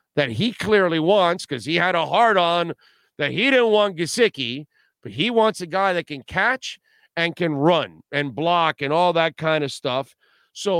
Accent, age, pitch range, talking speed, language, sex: American, 50-69, 150-205 Hz, 190 wpm, English, male